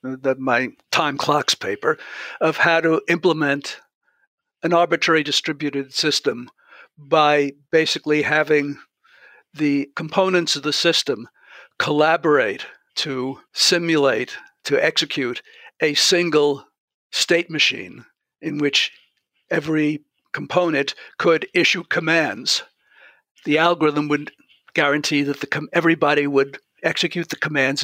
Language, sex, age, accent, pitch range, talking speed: English, male, 60-79, American, 140-165 Hz, 100 wpm